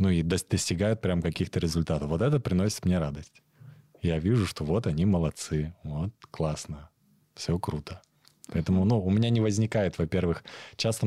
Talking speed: 155 wpm